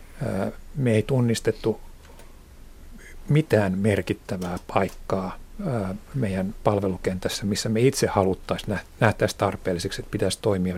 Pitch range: 95-115 Hz